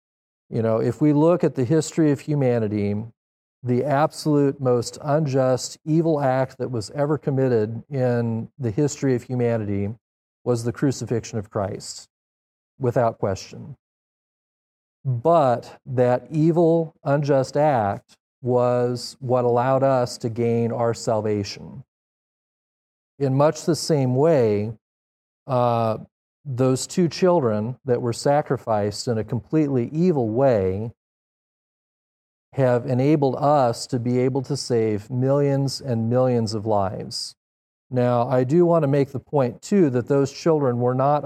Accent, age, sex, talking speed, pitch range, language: American, 40-59, male, 130 wpm, 110-135 Hz, English